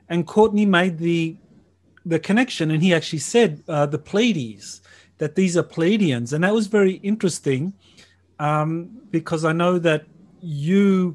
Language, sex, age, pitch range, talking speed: English, male, 40-59, 150-175 Hz, 150 wpm